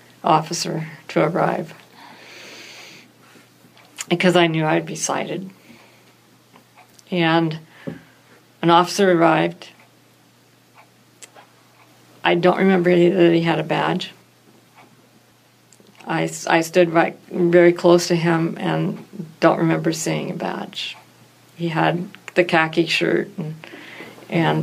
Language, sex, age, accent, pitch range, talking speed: English, female, 50-69, American, 165-185 Hz, 100 wpm